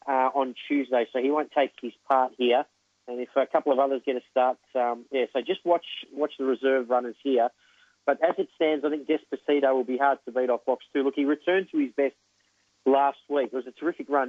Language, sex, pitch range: English, male, 125-150 Hz